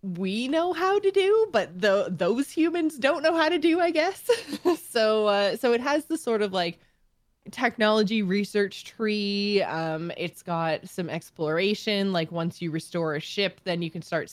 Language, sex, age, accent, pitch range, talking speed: English, female, 20-39, American, 170-225 Hz, 180 wpm